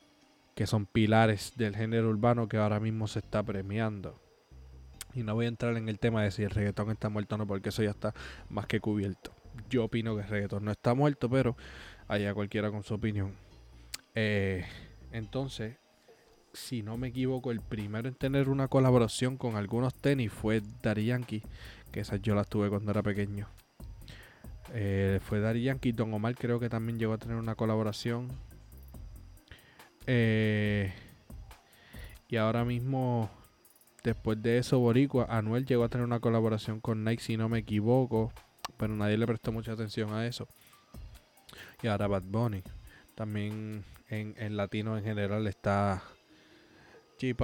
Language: Spanish